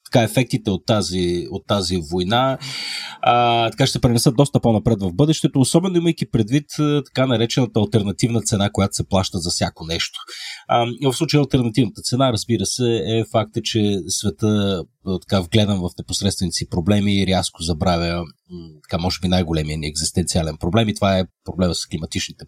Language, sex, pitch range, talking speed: Bulgarian, male, 95-125 Hz, 160 wpm